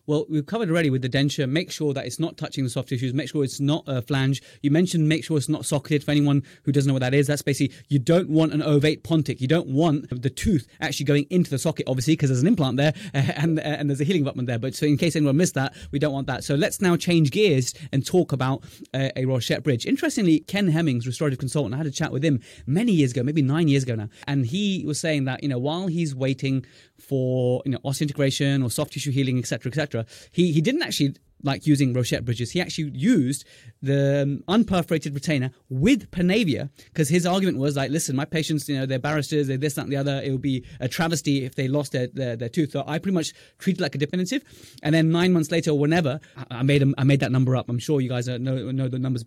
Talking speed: 260 wpm